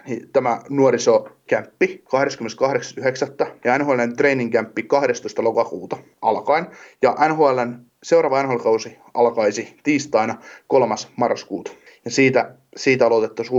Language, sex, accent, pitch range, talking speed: Finnish, male, native, 115-160 Hz, 95 wpm